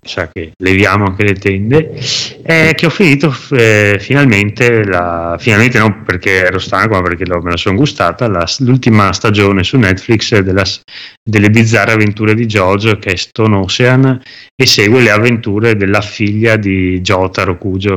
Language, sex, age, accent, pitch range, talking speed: Italian, male, 30-49, native, 95-110 Hz, 165 wpm